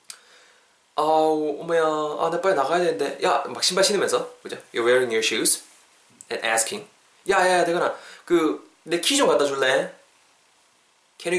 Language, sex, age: Korean, male, 20-39